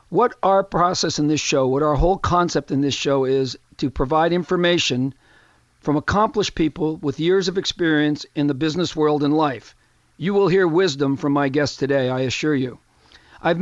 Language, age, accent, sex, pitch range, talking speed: English, 50-69, American, male, 140-175 Hz, 185 wpm